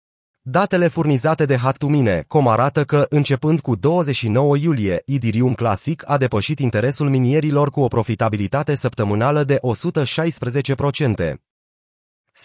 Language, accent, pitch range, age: Romanian, native, 115-150 Hz, 30-49